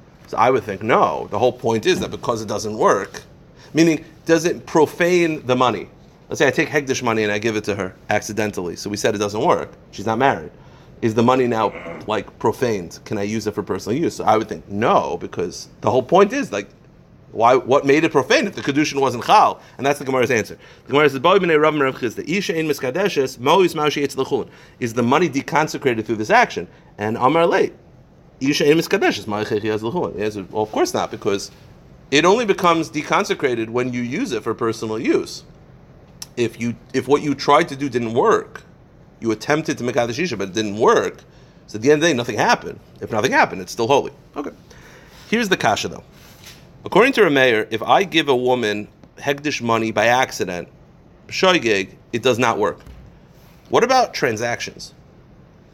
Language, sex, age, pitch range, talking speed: English, male, 30-49, 110-150 Hz, 180 wpm